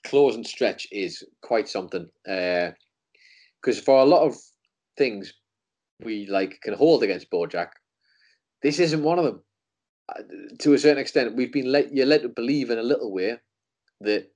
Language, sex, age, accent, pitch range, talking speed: English, male, 30-49, British, 110-150 Hz, 175 wpm